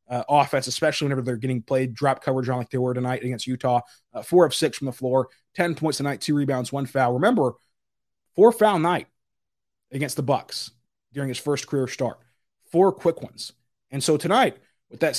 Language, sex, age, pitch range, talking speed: English, male, 20-39, 125-150 Hz, 200 wpm